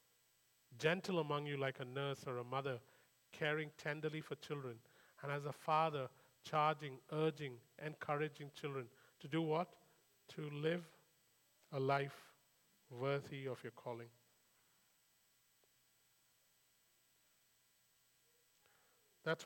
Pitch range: 115-155 Hz